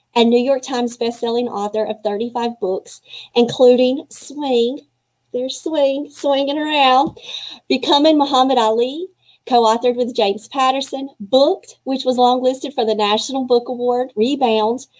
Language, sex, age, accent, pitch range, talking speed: English, female, 40-59, American, 220-260 Hz, 130 wpm